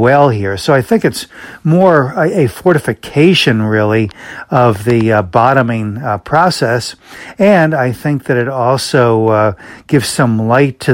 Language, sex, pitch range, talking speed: English, male, 110-135 Hz, 150 wpm